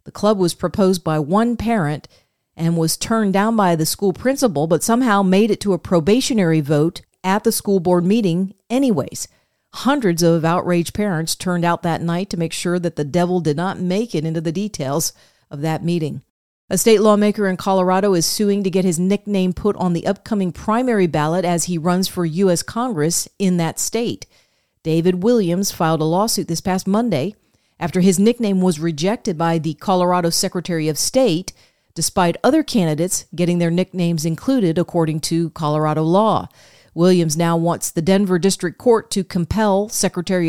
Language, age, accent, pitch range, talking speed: English, 40-59, American, 165-200 Hz, 175 wpm